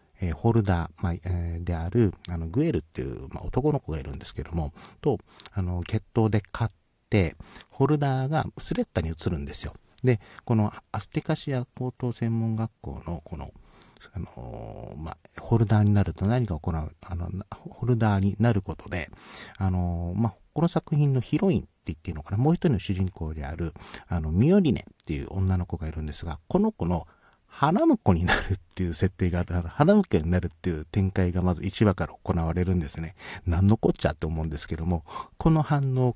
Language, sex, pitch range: Japanese, male, 85-115 Hz